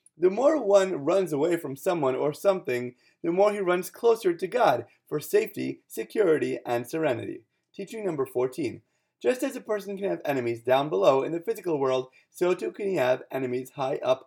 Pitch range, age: 135-210 Hz, 30-49